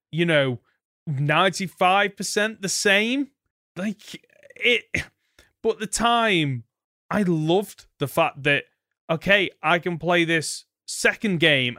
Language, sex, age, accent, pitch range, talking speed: English, male, 20-39, British, 130-185 Hz, 110 wpm